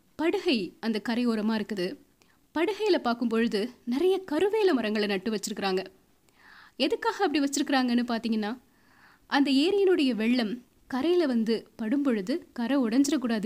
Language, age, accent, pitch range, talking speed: Tamil, 20-39, native, 220-285 Hz, 105 wpm